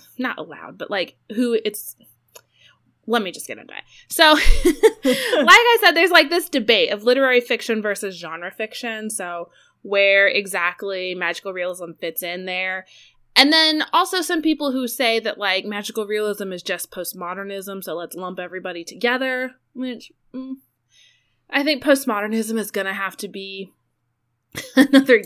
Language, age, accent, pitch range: English, 20-39, American, 180-245 Hz